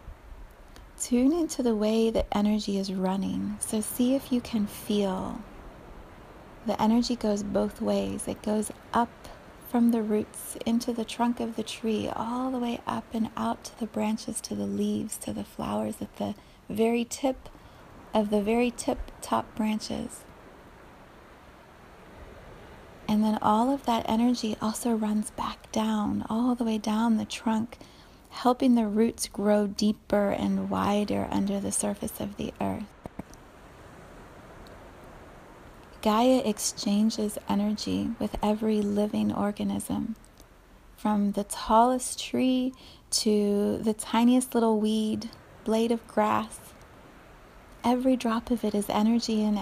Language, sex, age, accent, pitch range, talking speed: English, female, 30-49, American, 205-235 Hz, 135 wpm